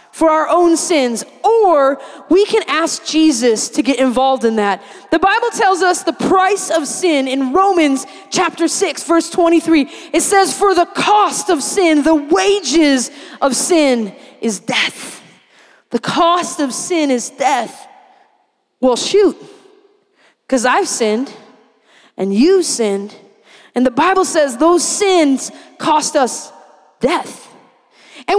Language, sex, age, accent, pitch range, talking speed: English, female, 20-39, American, 295-405 Hz, 135 wpm